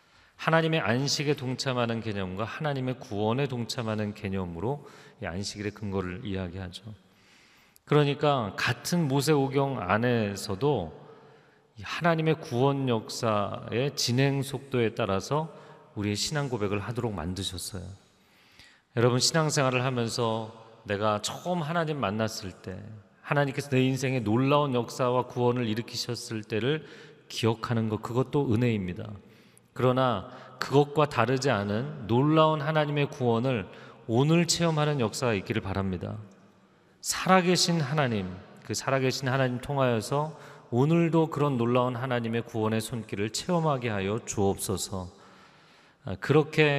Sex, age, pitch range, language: male, 40-59, 105-145 Hz, Korean